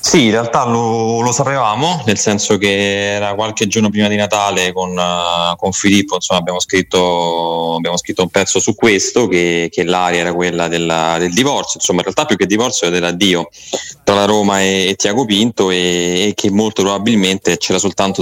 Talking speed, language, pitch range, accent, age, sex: 180 wpm, Italian, 90-105 Hz, native, 20-39, male